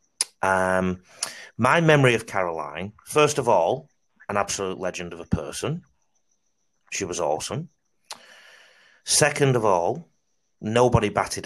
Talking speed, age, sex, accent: 115 wpm, 30-49, male, British